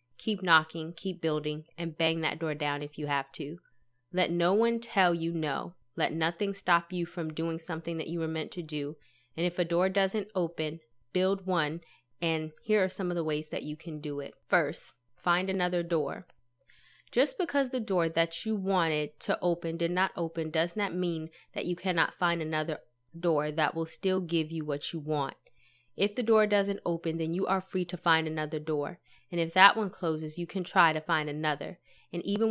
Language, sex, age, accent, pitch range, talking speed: English, female, 20-39, American, 155-180 Hz, 205 wpm